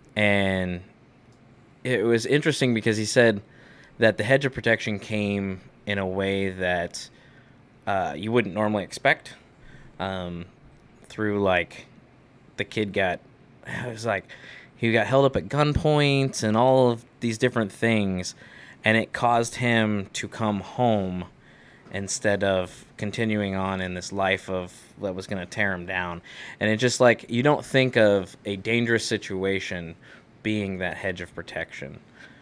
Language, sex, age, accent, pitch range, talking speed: English, male, 20-39, American, 95-115 Hz, 150 wpm